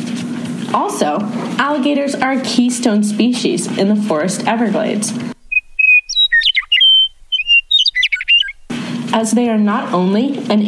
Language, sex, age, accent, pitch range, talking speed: English, female, 20-39, American, 210-250 Hz, 90 wpm